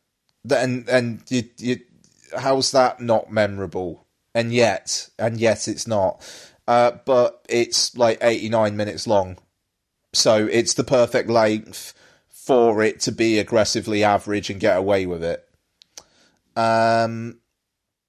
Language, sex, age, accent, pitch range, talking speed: English, male, 30-49, British, 100-115 Hz, 130 wpm